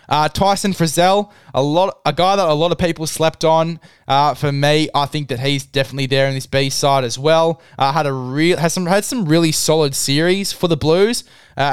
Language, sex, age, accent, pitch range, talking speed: English, male, 20-39, Australian, 130-160 Hz, 220 wpm